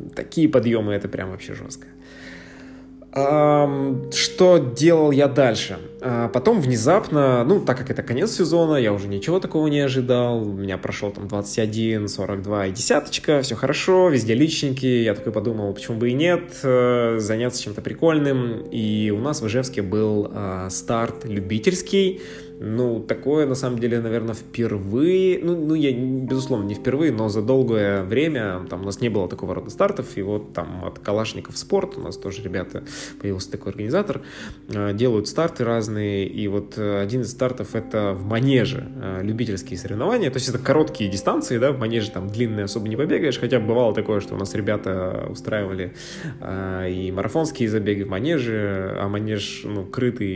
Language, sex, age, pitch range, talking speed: Russian, male, 20-39, 100-135 Hz, 160 wpm